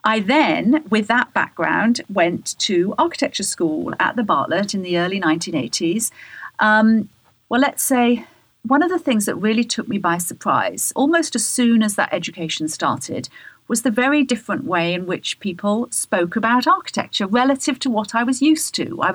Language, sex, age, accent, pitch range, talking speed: English, female, 40-59, British, 185-240 Hz, 175 wpm